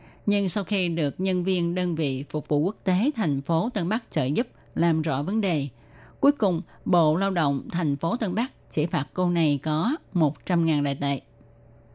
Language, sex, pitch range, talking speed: Vietnamese, female, 155-210 Hz, 205 wpm